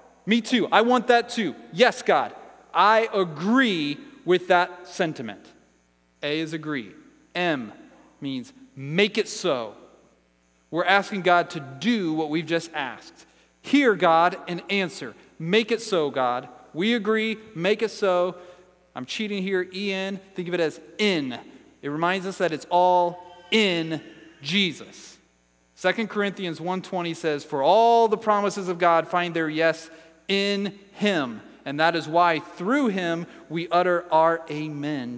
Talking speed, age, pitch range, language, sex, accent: 145 wpm, 30-49, 150-200 Hz, English, male, American